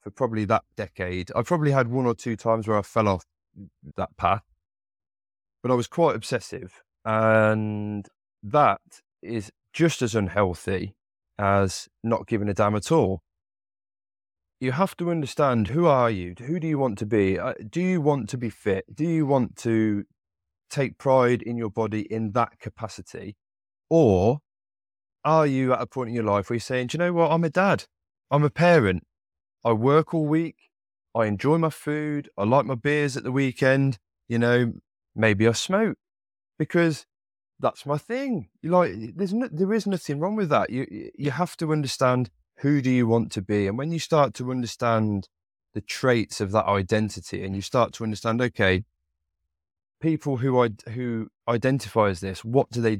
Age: 20-39